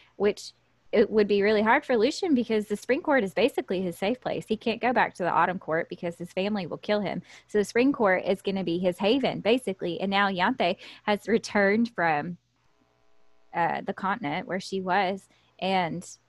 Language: English